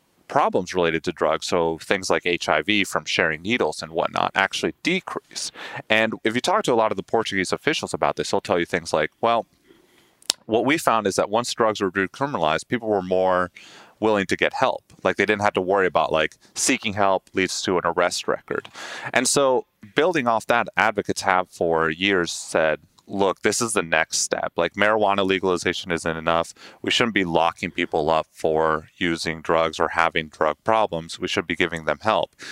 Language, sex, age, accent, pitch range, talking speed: English, male, 30-49, American, 85-100 Hz, 195 wpm